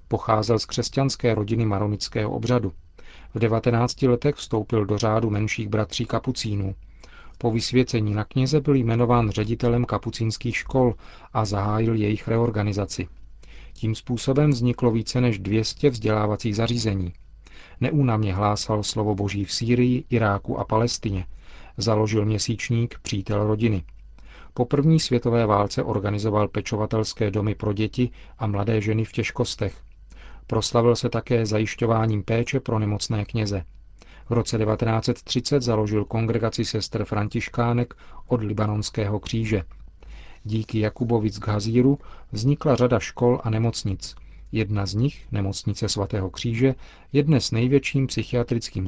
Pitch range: 105-120 Hz